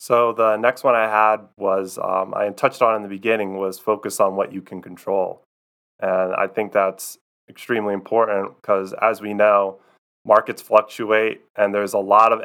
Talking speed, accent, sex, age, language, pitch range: 185 wpm, American, male, 20-39, English, 100-110 Hz